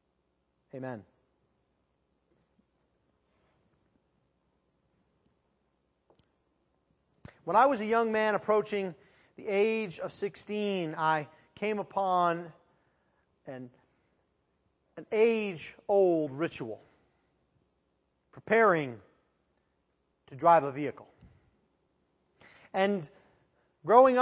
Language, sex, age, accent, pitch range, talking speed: English, male, 40-59, American, 150-230 Hz, 65 wpm